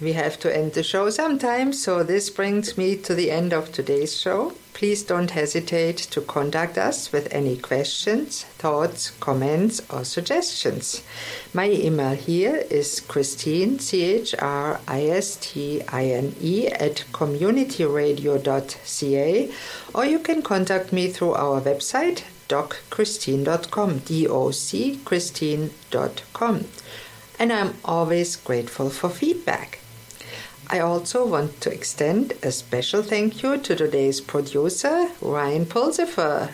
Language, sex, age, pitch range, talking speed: English, female, 50-69, 145-215 Hz, 110 wpm